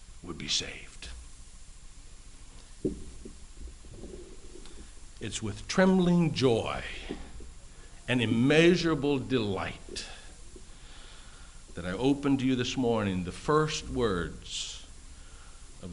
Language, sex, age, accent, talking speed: English, male, 60-79, American, 80 wpm